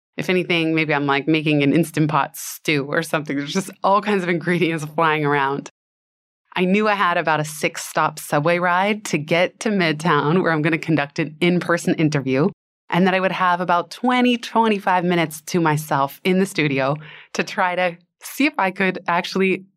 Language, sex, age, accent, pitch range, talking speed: English, female, 20-39, American, 155-190 Hz, 190 wpm